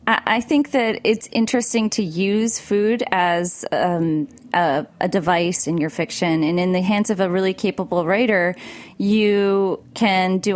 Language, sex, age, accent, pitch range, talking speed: English, female, 20-39, American, 165-205 Hz, 160 wpm